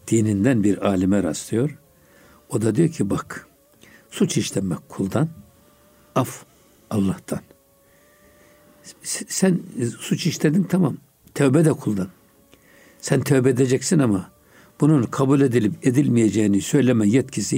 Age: 60-79